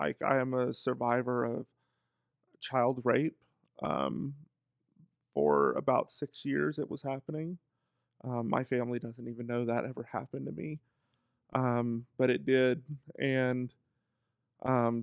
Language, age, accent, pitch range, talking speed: English, 30-49, American, 120-130 Hz, 130 wpm